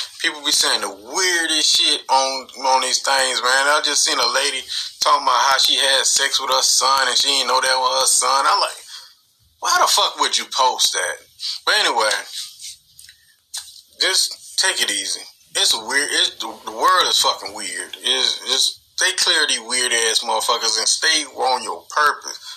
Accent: American